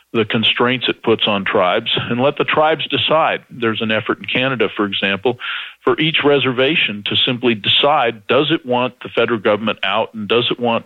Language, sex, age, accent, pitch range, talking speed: English, male, 50-69, American, 110-130 Hz, 195 wpm